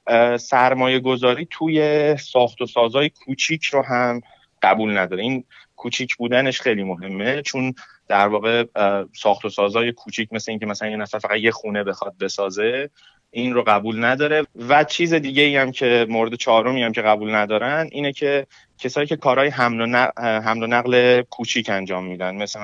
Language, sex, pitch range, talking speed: Persian, male, 105-135 Hz, 160 wpm